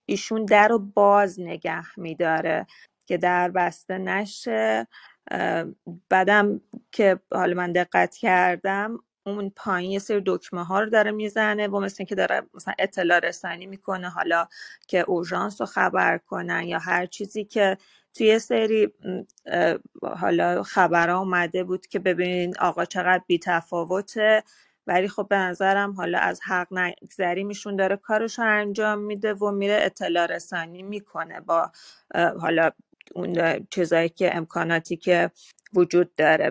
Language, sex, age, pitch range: Persian, female, 30-49, 175-200 Hz